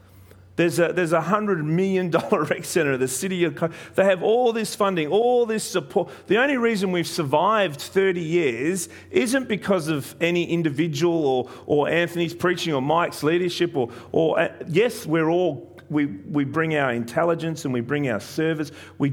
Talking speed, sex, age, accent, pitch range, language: 170 wpm, male, 40-59, Australian, 120-170 Hz, English